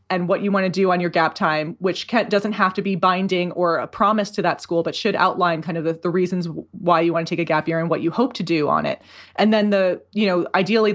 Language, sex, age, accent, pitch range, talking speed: English, female, 20-39, American, 165-195 Hz, 285 wpm